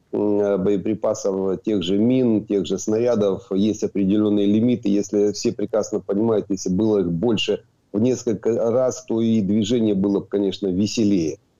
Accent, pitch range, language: native, 100-120 Hz, Ukrainian